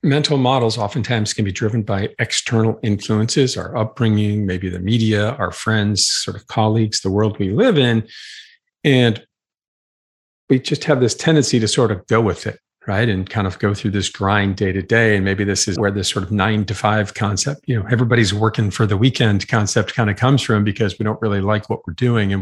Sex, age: male, 50-69